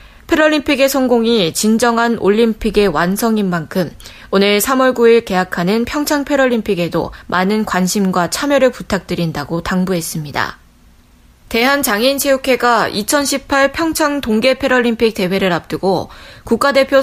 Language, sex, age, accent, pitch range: Korean, female, 20-39, native, 190-255 Hz